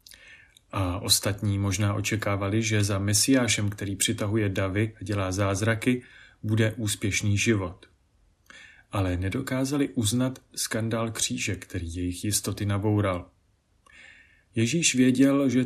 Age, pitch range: 30-49, 95-115 Hz